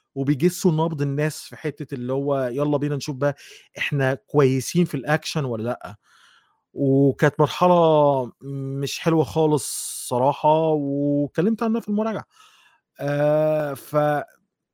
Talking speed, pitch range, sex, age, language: 120 wpm, 135-170 Hz, male, 30-49, Arabic